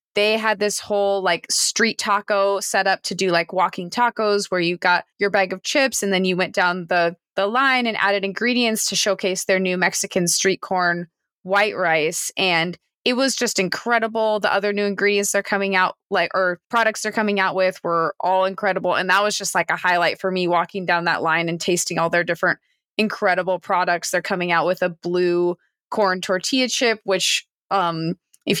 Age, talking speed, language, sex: 20-39, 200 wpm, English, female